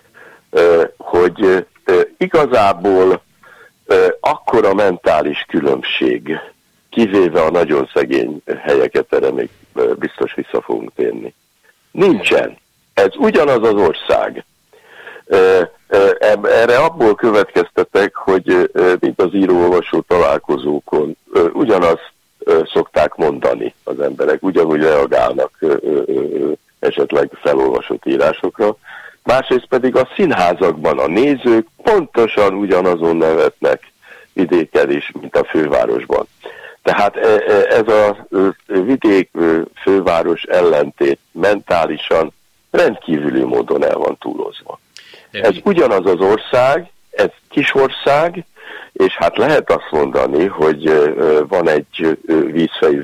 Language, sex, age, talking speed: Hungarian, male, 60-79, 90 wpm